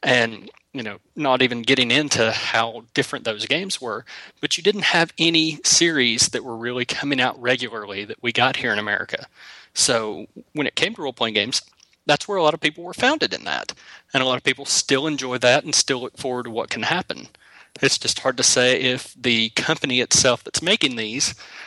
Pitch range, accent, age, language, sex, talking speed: 120-150 Hz, American, 30-49, English, male, 210 wpm